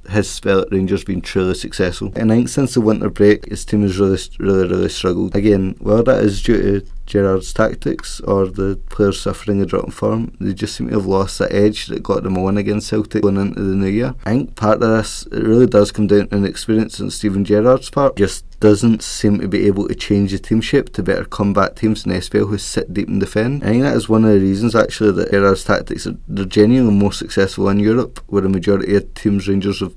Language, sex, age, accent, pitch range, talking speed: English, male, 20-39, British, 100-110 Hz, 240 wpm